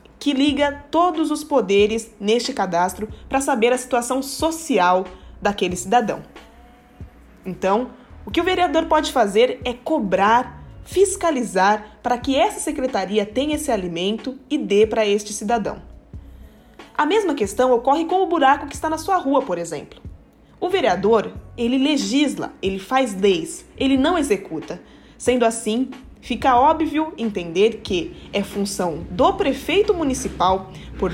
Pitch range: 205-295 Hz